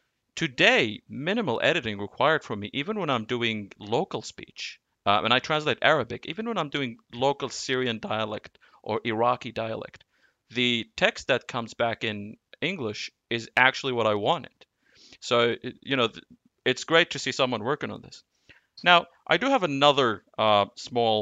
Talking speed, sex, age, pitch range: 160 wpm, male, 30-49, 110-130 Hz